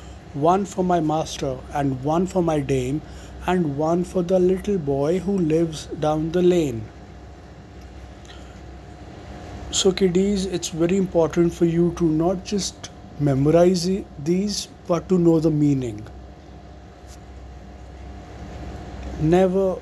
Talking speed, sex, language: 115 wpm, male, English